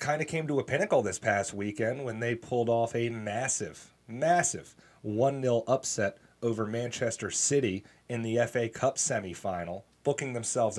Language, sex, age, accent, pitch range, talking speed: English, male, 30-49, American, 100-120 Hz, 155 wpm